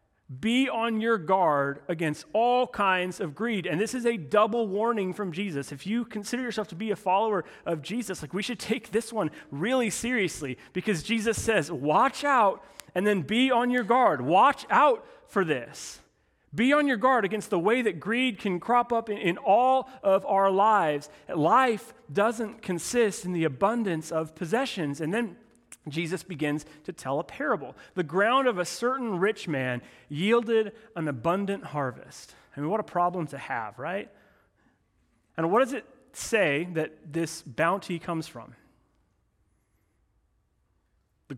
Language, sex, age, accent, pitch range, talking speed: English, male, 30-49, American, 140-220 Hz, 165 wpm